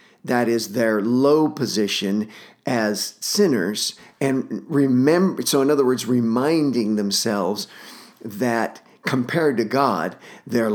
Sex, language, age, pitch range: male, English, 50-69, 110-145 Hz